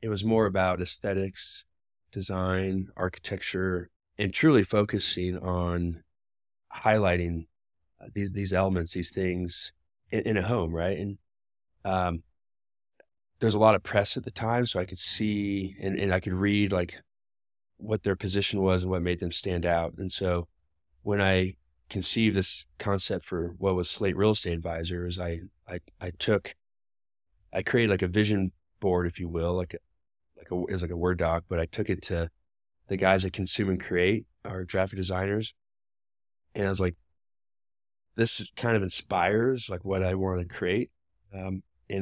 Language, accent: English, American